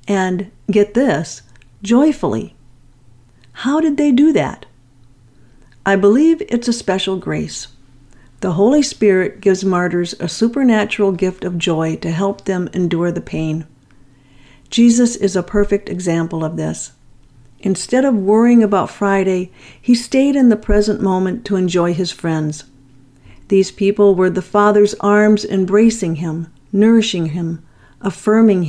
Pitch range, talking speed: 155-220 Hz, 135 wpm